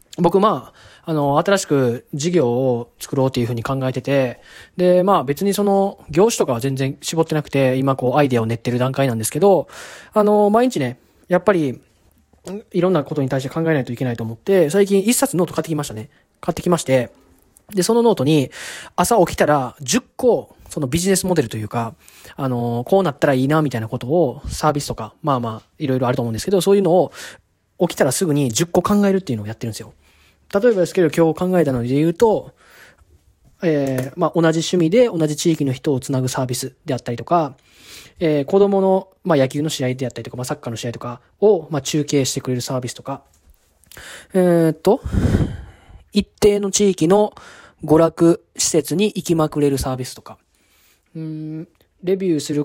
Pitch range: 125-175 Hz